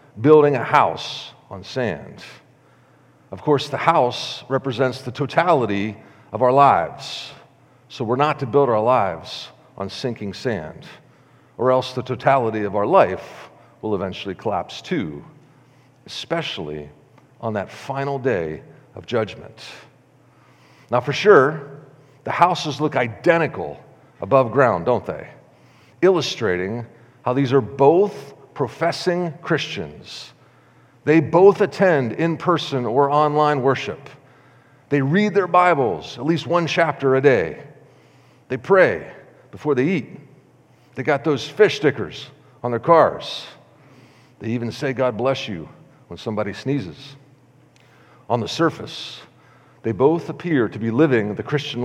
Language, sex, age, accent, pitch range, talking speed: English, male, 40-59, American, 120-155 Hz, 130 wpm